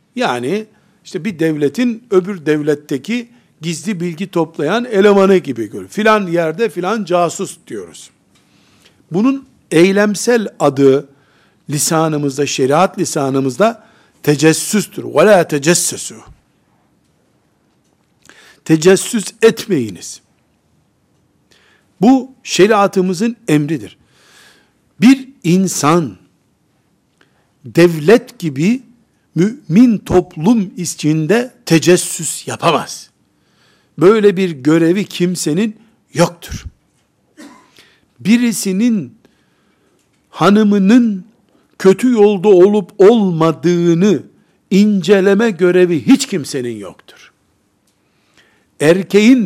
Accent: native